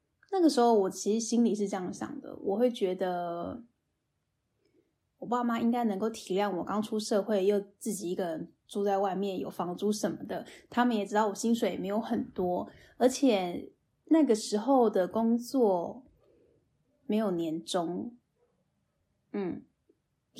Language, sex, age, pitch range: Chinese, female, 10-29, 195-245 Hz